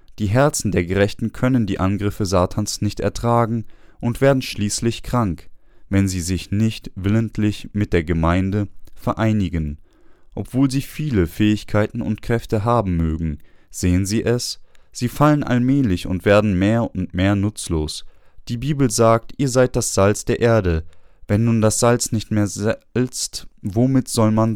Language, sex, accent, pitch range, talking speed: German, male, German, 95-120 Hz, 150 wpm